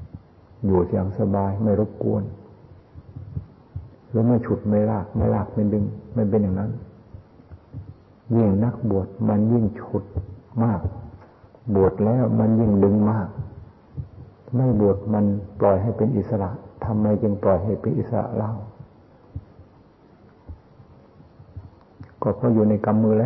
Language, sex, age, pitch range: Thai, male, 60-79, 100-110 Hz